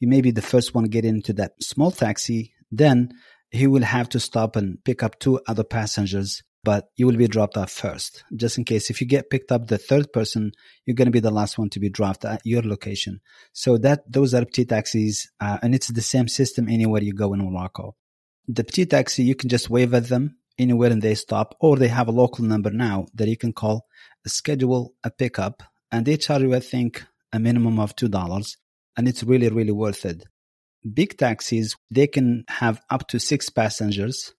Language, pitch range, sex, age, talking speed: English, 105-125 Hz, male, 30-49, 220 wpm